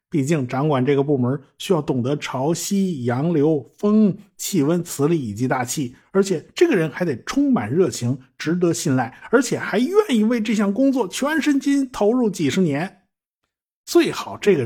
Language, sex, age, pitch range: Chinese, male, 50-69, 145-225 Hz